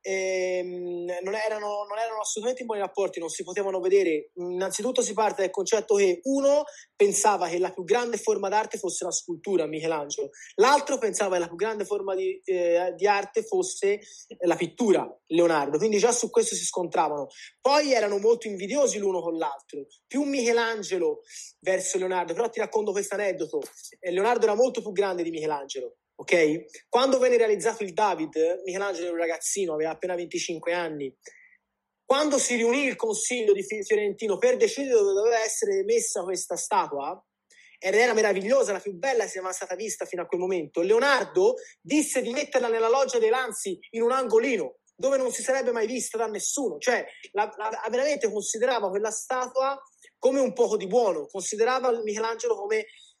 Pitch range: 185-270 Hz